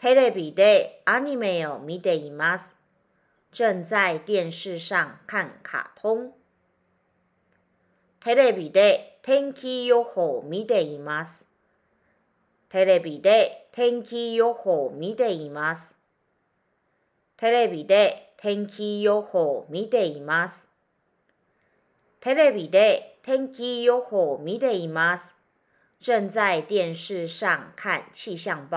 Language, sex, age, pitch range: Japanese, female, 40-59, 170-245 Hz